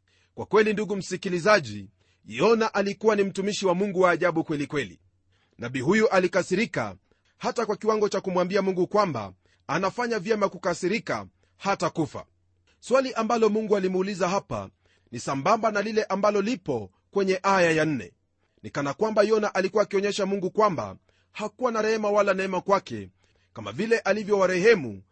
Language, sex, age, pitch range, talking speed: Swahili, male, 40-59, 145-205 Hz, 145 wpm